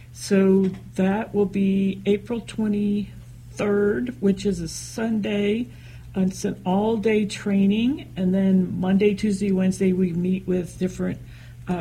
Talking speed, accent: 120 wpm, American